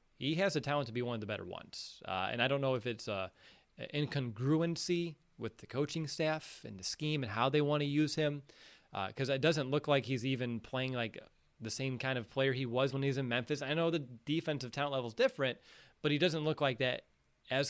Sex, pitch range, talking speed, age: male, 120-150 Hz, 240 wpm, 30-49